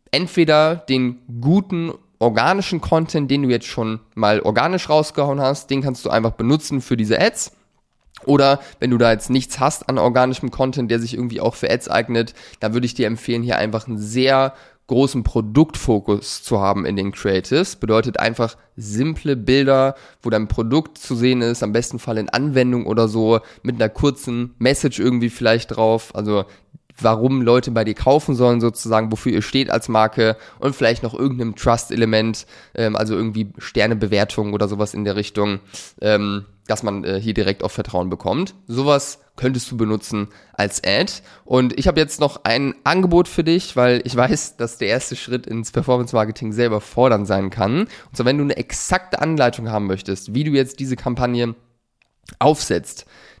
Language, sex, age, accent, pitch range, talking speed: German, male, 20-39, German, 110-135 Hz, 175 wpm